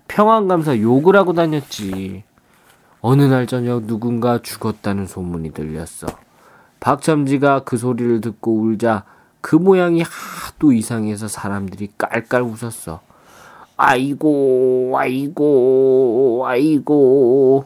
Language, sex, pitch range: Korean, male, 115-180 Hz